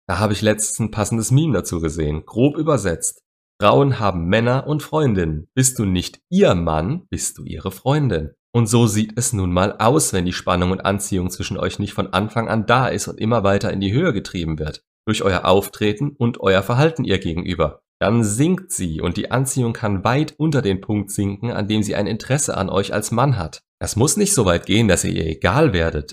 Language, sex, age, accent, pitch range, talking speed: German, male, 30-49, German, 95-125 Hz, 215 wpm